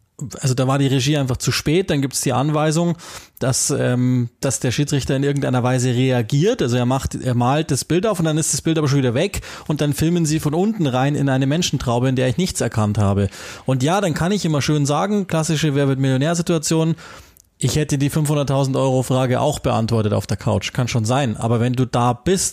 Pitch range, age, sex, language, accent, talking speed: 125-155 Hz, 20-39, male, German, German, 220 wpm